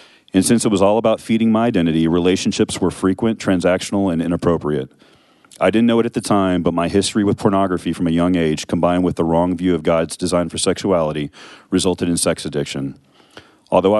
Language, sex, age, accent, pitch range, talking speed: English, male, 40-59, American, 85-100 Hz, 195 wpm